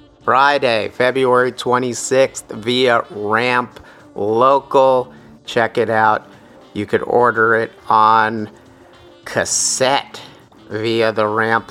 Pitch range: 105-130 Hz